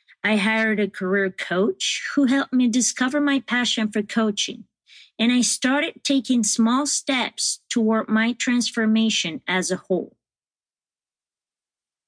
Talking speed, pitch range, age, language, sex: 125 wpm, 205-255 Hz, 40-59, English, female